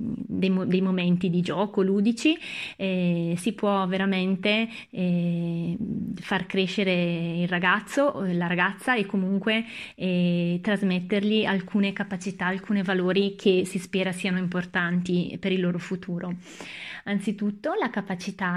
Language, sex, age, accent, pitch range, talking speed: Italian, female, 20-39, native, 180-205 Hz, 120 wpm